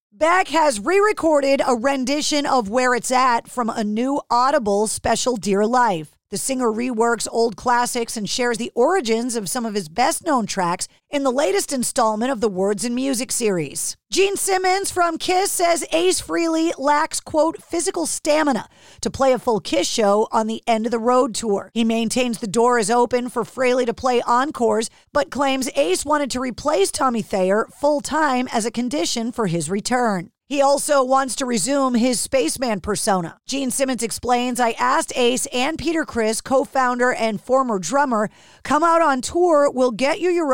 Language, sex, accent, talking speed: English, female, American, 180 wpm